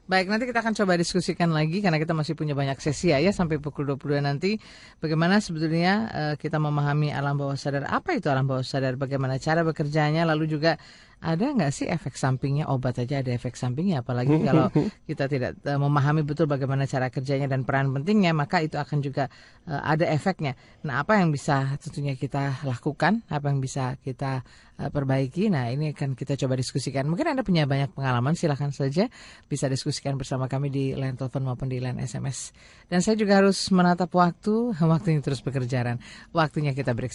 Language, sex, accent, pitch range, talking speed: Indonesian, female, native, 130-165 Hz, 185 wpm